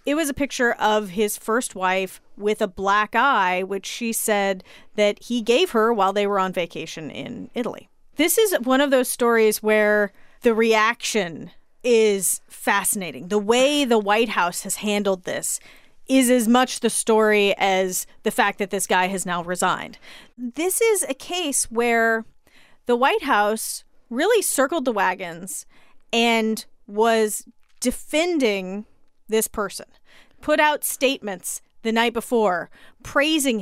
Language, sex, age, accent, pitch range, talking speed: English, female, 30-49, American, 205-255 Hz, 150 wpm